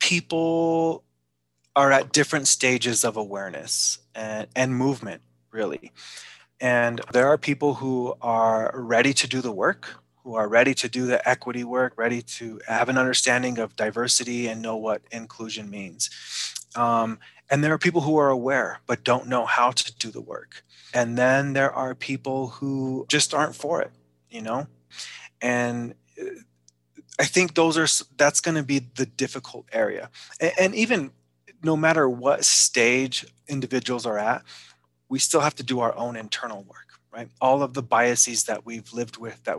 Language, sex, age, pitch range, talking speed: English, male, 20-39, 110-135 Hz, 165 wpm